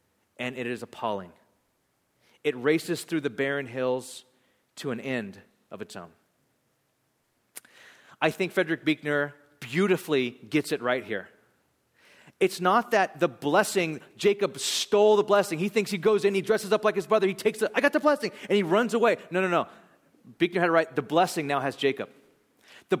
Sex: male